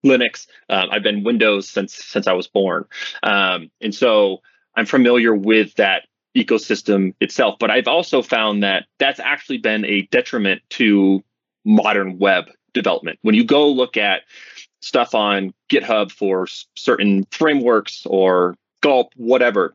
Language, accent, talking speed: English, American, 145 wpm